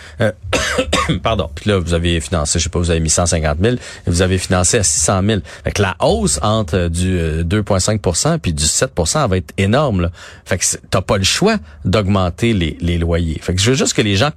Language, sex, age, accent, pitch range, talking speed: French, male, 40-59, Canadian, 90-110 Hz, 225 wpm